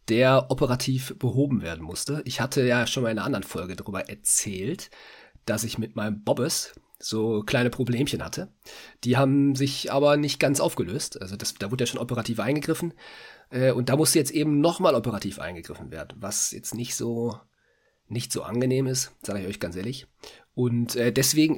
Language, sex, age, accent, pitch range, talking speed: German, male, 40-59, German, 120-145 Hz, 180 wpm